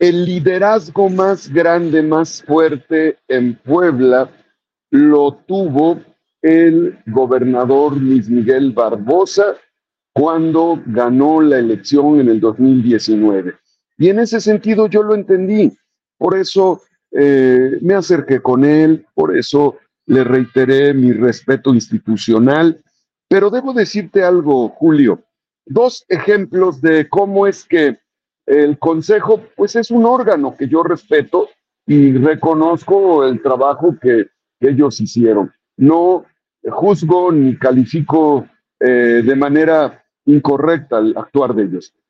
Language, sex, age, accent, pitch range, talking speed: Spanish, male, 50-69, Mexican, 130-190 Hz, 120 wpm